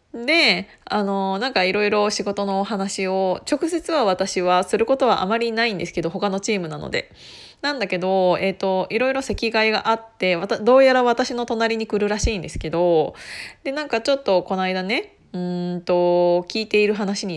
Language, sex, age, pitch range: Japanese, female, 20-39, 190-295 Hz